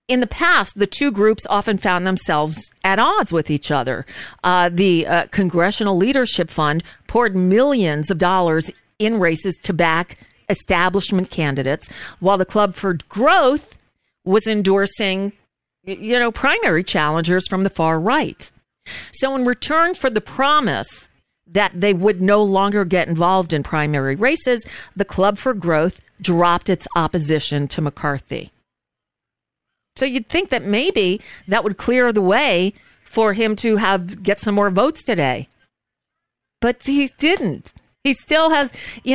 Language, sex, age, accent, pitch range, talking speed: English, female, 40-59, American, 175-225 Hz, 145 wpm